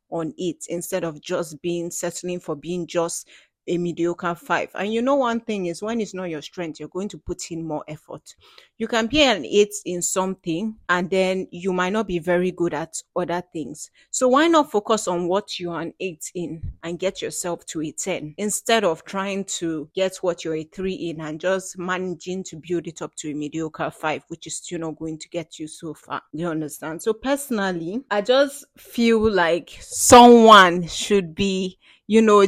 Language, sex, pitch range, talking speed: English, female, 170-195 Hz, 205 wpm